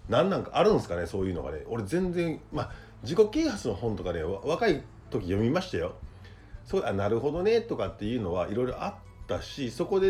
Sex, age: male, 40-59